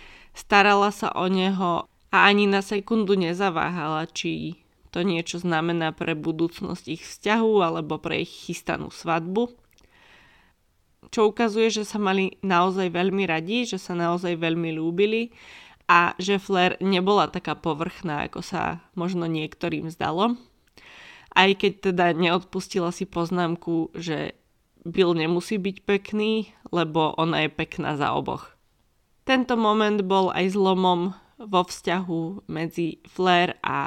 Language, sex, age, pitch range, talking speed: Slovak, female, 20-39, 165-200 Hz, 130 wpm